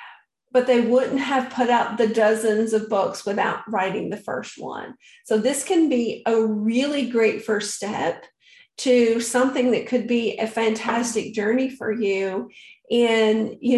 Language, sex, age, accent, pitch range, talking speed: English, female, 50-69, American, 220-250 Hz, 155 wpm